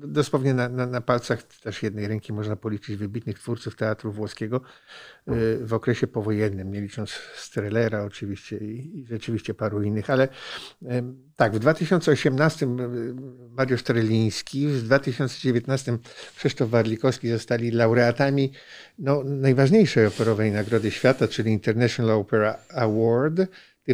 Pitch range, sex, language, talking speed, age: 110-140 Hz, male, Polish, 120 wpm, 50-69